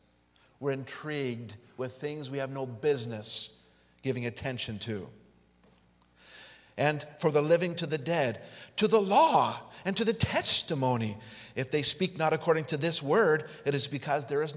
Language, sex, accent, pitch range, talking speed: English, male, American, 120-165 Hz, 155 wpm